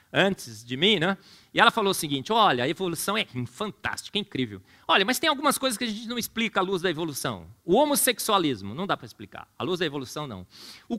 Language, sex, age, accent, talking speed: Portuguese, male, 40-59, Brazilian, 230 wpm